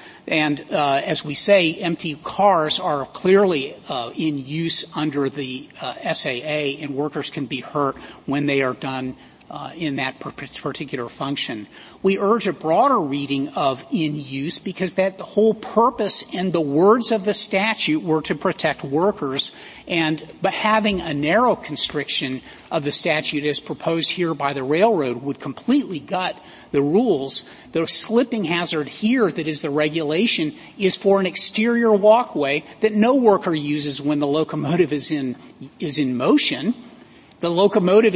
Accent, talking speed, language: American, 160 wpm, English